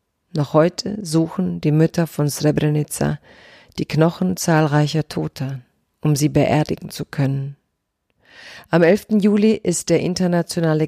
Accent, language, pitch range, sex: German, German, 150-180 Hz, female